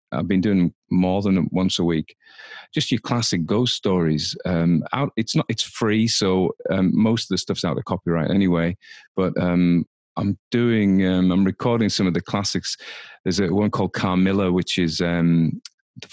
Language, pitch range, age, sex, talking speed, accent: English, 85-100 Hz, 30-49, male, 180 wpm, British